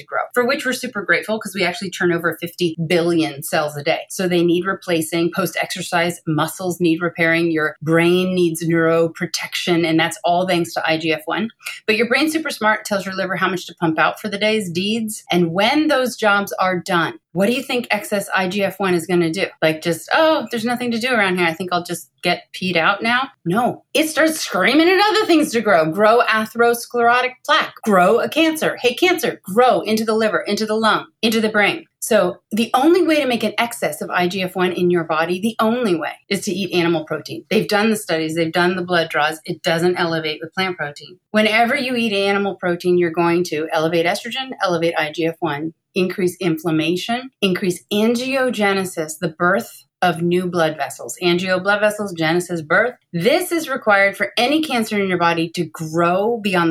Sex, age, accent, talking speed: female, 30-49, American, 195 wpm